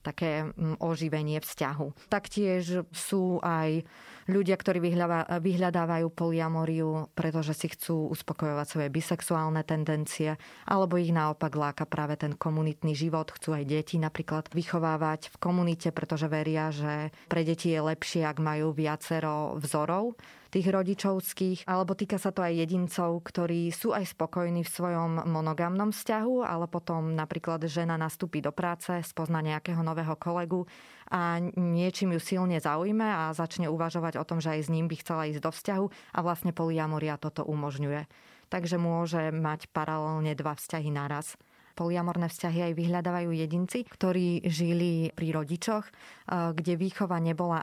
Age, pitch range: 20-39, 155-175 Hz